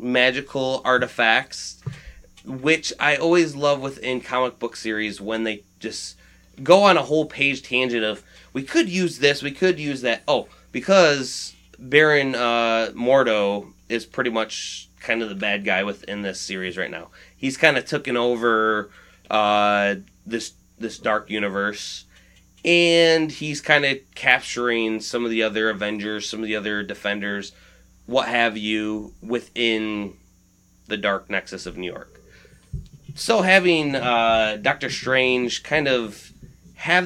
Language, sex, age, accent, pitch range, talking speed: English, male, 20-39, American, 105-135 Hz, 145 wpm